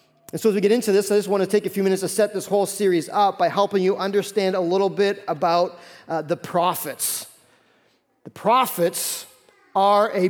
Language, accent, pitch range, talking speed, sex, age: English, American, 185-215 Hz, 210 wpm, male, 40-59